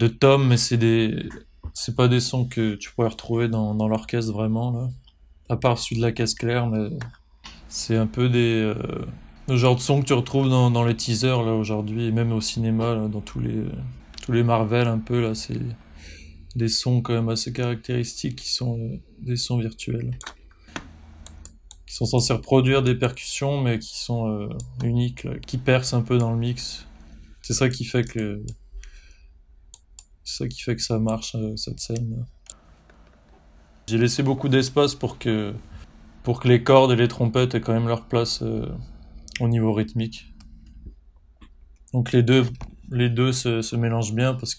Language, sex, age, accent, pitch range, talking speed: French, male, 20-39, French, 85-125 Hz, 180 wpm